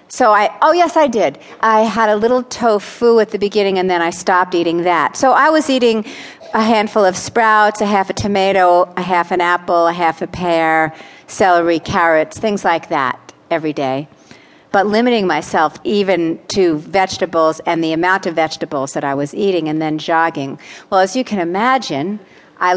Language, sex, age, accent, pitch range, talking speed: English, female, 50-69, American, 160-210 Hz, 185 wpm